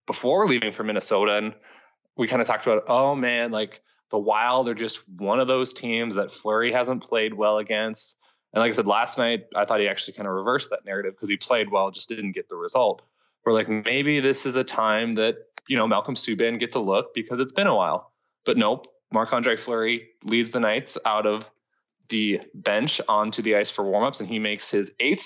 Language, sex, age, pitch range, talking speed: English, male, 20-39, 110-140 Hz, 220 wpm